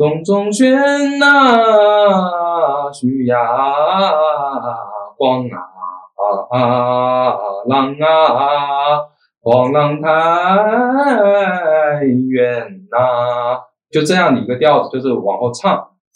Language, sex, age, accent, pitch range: Chinese, male, 20-39, native, 120-160 Hz